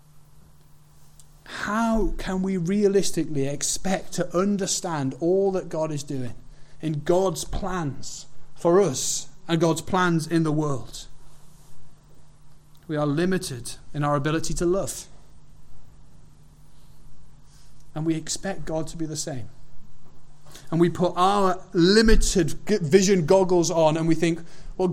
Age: 30-49